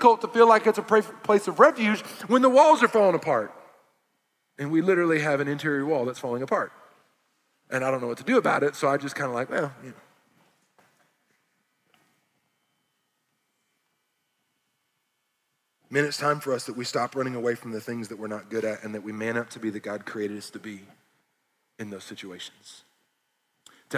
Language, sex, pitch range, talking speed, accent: English, male, 135-195 Hz, 195 wpm, American